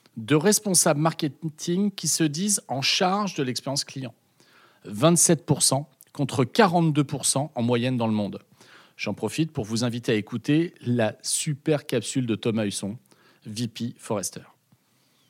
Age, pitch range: 40-59, 130-170 Hz